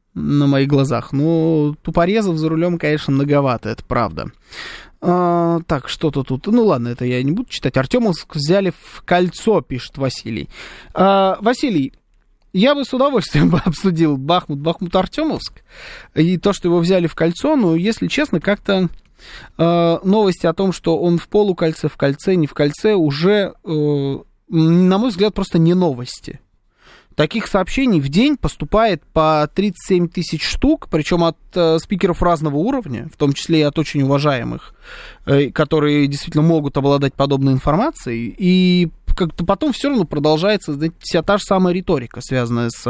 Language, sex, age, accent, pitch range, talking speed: Russian, male, 20-39, native, 145-195 Hz, 155 wpm